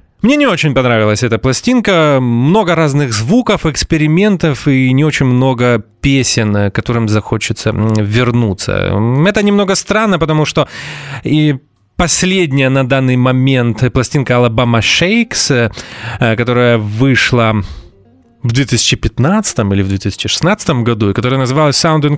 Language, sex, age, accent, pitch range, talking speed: Russian, male, 20-39, native, 115-150 Hz, 120 wpm